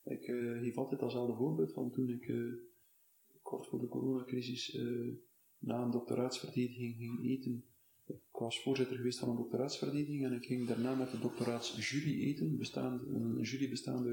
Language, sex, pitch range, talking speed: Dutch, male, 115-130 Hz, 165 wpm